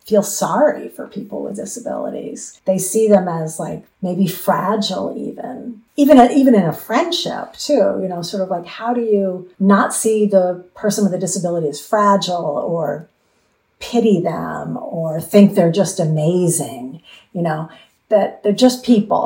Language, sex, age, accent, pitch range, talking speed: English, female, 50-69, American, 180-220 Hz, 160 wpm